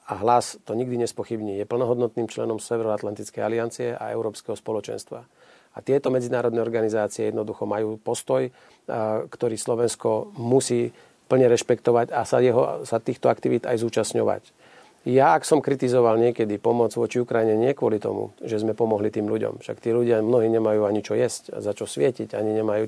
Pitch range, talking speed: 110-125 Hz, 165 wpm